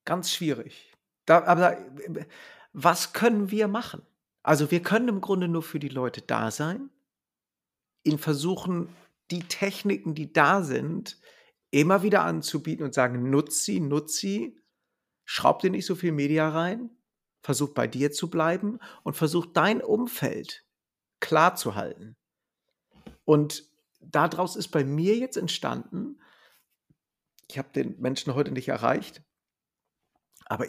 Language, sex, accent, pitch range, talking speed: German, male, German, 140-180 Hz, 135 wpm